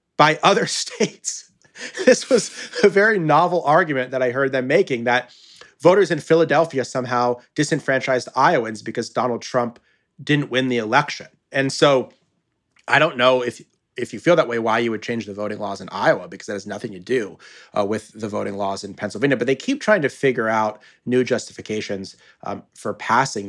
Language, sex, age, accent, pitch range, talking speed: English, male, 30-49, American, 110-145 Hz, 185 wpm